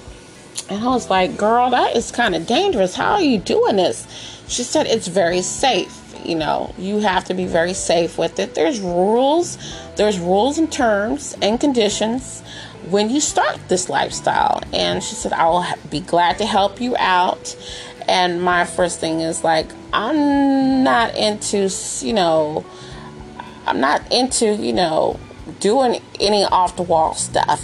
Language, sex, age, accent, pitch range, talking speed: English, female, 30-49, American, 175-265 Hz, 165 wpm